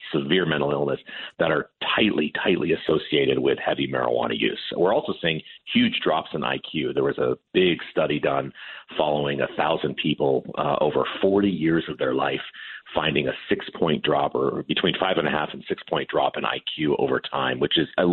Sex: male